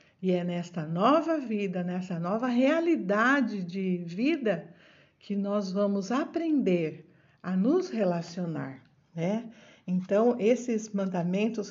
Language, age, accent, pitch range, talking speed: Portuguese, 60-79, Brazilian, 185-250 Hz, 110 wpm